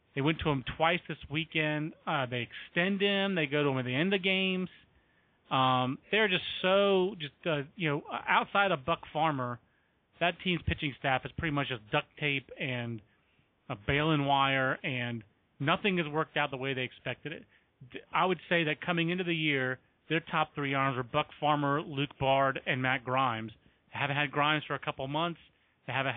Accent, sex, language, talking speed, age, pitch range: American, male, English, 200 wpm, 30-49, 135-165 Hz